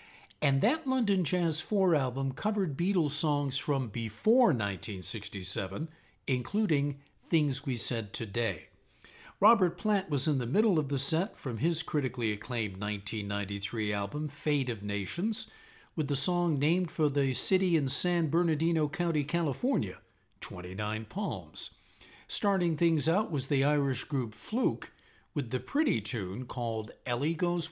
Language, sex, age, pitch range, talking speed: English, male, 50-69, 115-170 Hz, 140 wpm